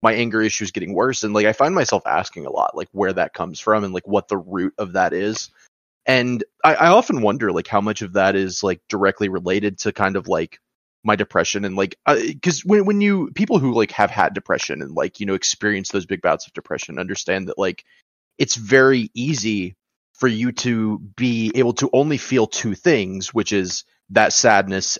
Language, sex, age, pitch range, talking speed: English, male, 30-49, 95-115 Hz, 215 wpm